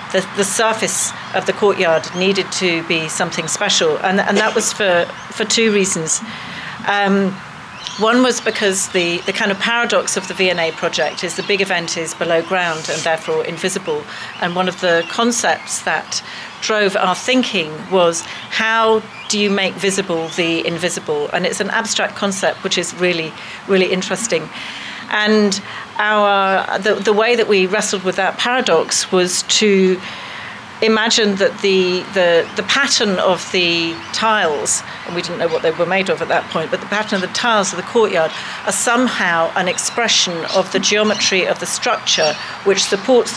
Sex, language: female, English